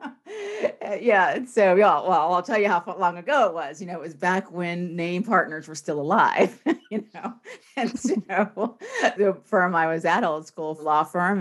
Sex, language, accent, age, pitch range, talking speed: female, English, American, 40-59, 150-200 Hz, 205 wpm